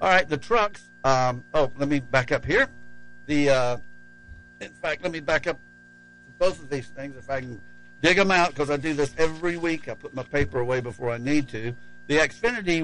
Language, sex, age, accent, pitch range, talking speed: English, male, 60-79, American, 115-155 Hz, 215 wpm